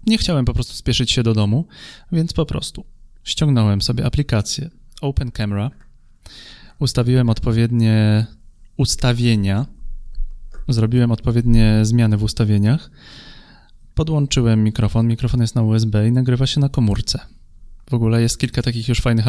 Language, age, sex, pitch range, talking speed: Polish, 30-49, male, 110-125 Hz, 130 wpm